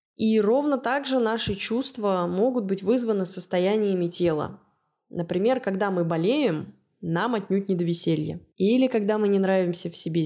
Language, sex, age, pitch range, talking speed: Russian, female, 20-39, 180-230 Hz, 150 wpm